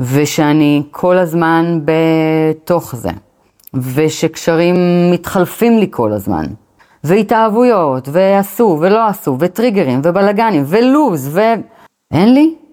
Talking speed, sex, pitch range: 90 wpm, female, 135-200 Hz